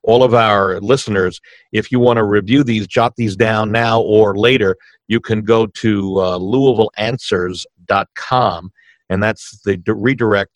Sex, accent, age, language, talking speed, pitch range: male, American, 50-69, English, 155 wpm, 95-115 Hz